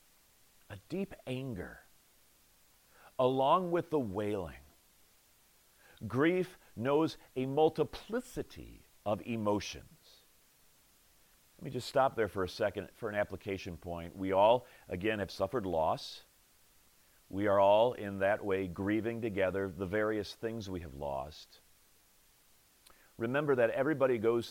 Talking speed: 120 wpm